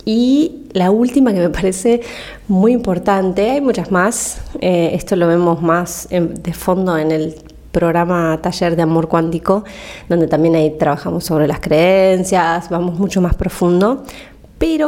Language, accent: Spanish, Argentinian